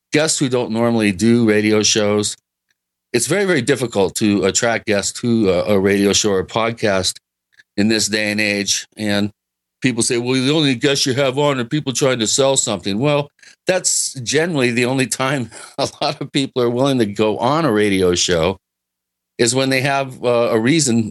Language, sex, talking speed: English, male, 185 wpm